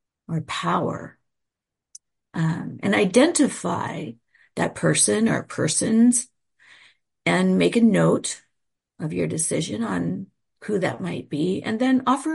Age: 50-69